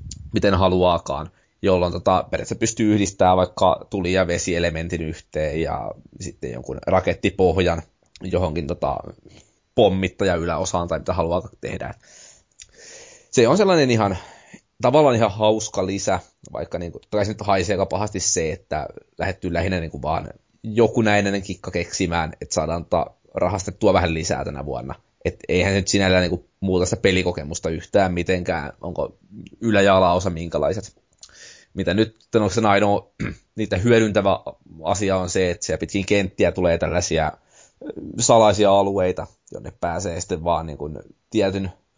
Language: Finnish